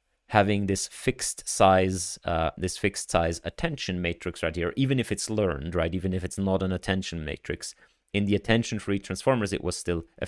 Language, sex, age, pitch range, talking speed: English, male, 30-49, 90-110 Hz, 195 wpm